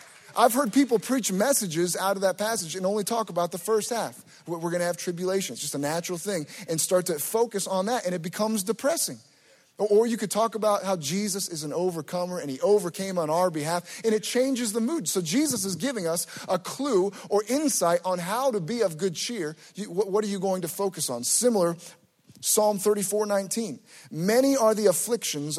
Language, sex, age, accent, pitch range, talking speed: English, male, 30-49, American, 175-225 Hz, 205 wpm